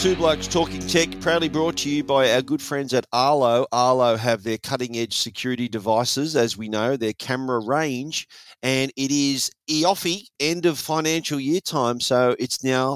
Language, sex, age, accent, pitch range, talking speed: English, male, 40-59, Australian, 110-140 Hz, 175 wpm